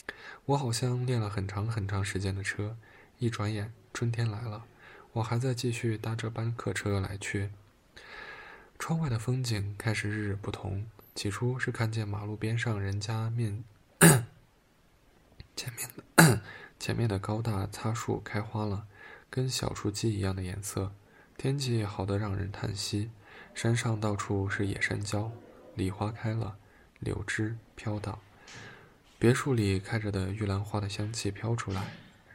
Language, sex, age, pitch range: Chinese, male, 20-39, 100-115 Hz